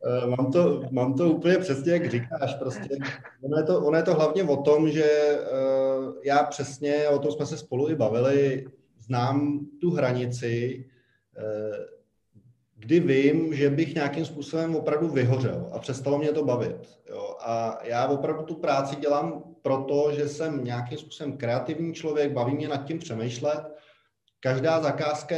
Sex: male